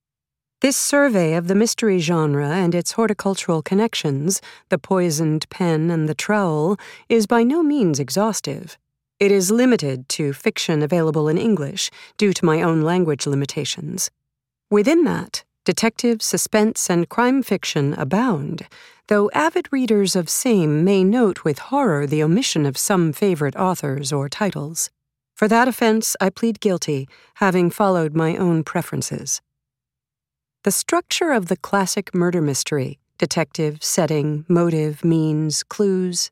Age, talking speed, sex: 40-59, 130 wpm, female